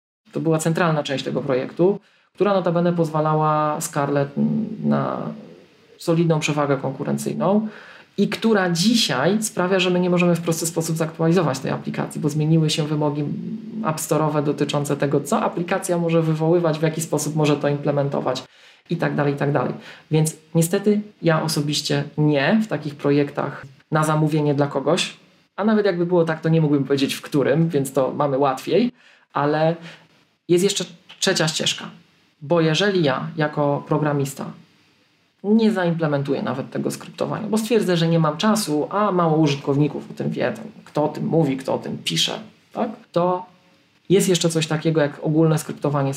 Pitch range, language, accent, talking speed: 145-180 Hz, Polish, native, 155 wpm